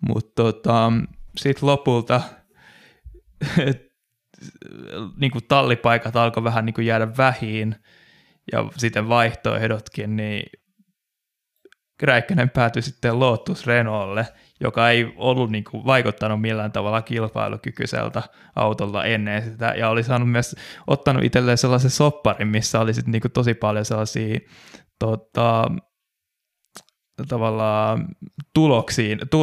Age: 20-39